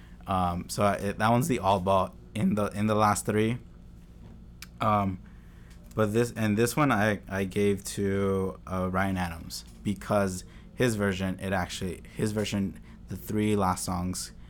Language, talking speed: English, 160 wpm